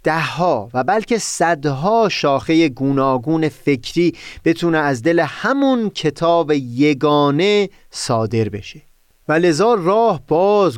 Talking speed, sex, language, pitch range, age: 105 wpm, male, Persian, 125-165 Hz, 30-49